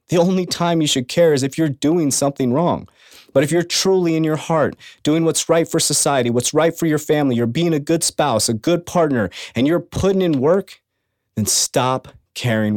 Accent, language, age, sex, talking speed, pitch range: American, English, 30-49, male, 210 wpm, 130-165 Hz